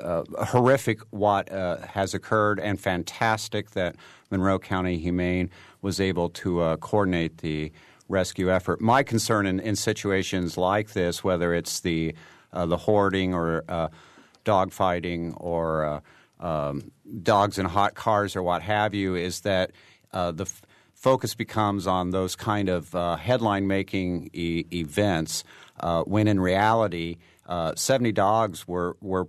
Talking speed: 145 wpm